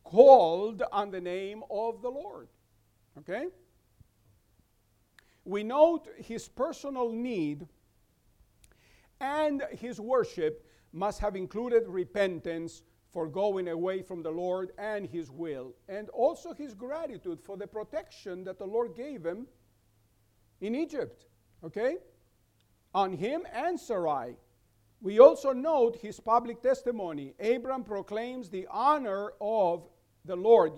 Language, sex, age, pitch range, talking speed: English, male, 50-69, 165-245 Hz, 120 wpm